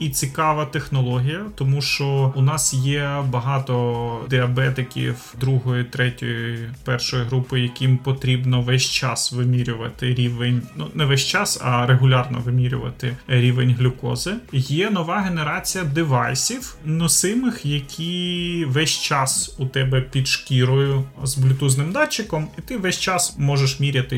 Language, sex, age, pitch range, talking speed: Ukrainian, male, 30-49, 130-150 Hz, 125 wpm